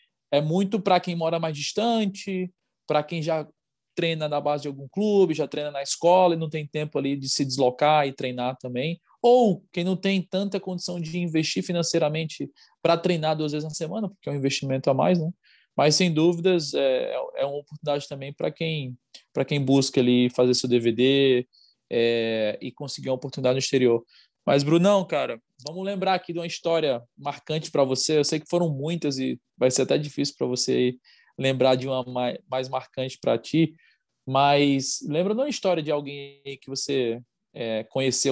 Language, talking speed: Portuguese, 185 wpm